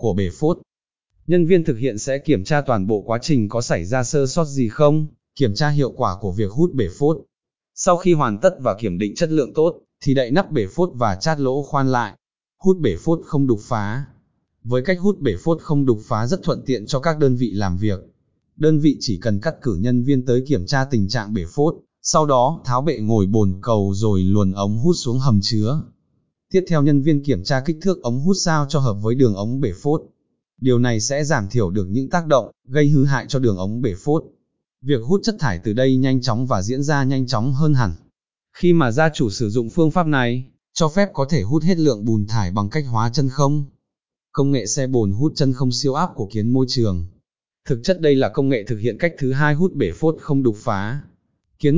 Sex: male